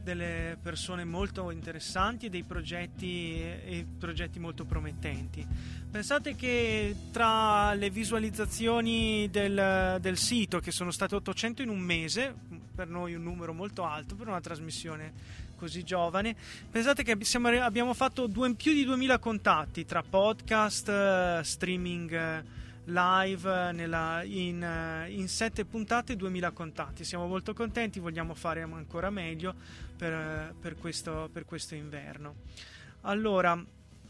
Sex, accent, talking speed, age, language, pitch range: male, native, 125 wpm, 20-39, Italian, 165-220 Hz